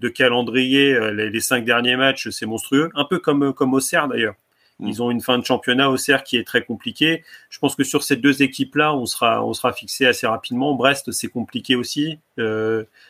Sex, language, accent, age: male, French, French, 30-49